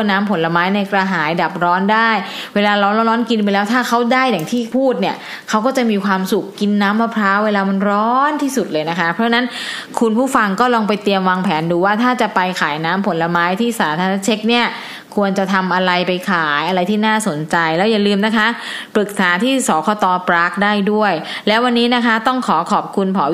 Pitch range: 190-230 Hz